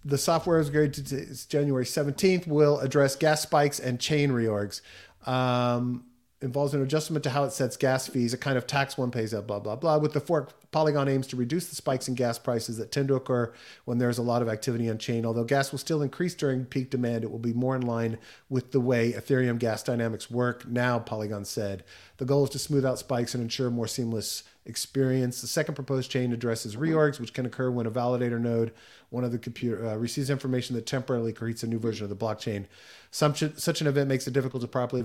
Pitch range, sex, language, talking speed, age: 115-140 Hz, male, English, 230 wpm, 40-59